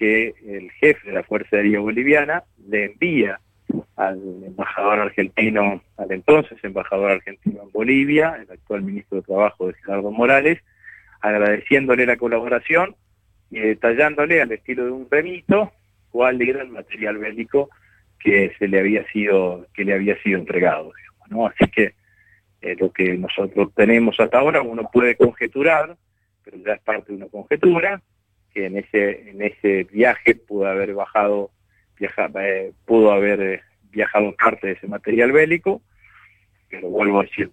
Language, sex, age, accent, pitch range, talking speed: Spanish, male, 40-59, Argentinian, 100-115 Hz, 155 wpm